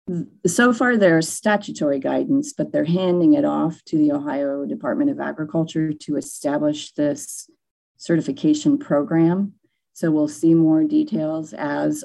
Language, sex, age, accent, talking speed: English, female, 40-59, American, 135 wpm